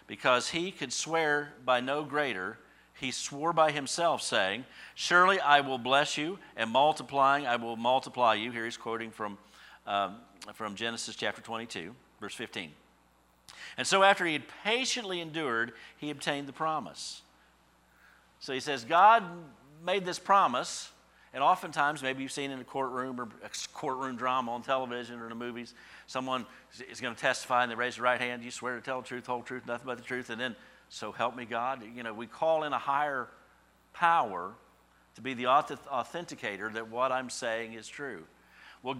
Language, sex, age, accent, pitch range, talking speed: English, male, 50-69, American, 120-160 Hz, 185 wpm